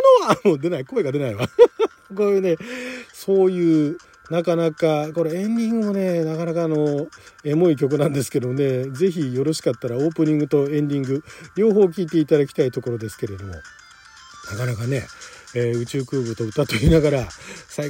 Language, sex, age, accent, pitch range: Japanese, male, 40-59, native, 145-230 Hz